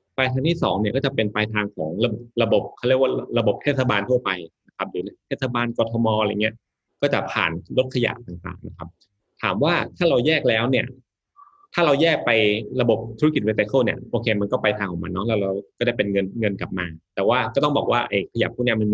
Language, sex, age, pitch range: Thai, male, 20-39, 100-125 Hz